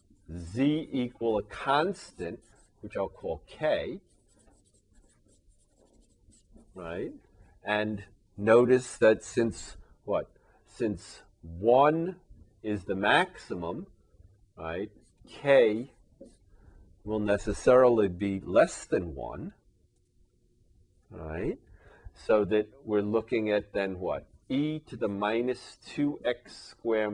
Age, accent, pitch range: 40-59, American, 90-110 Hz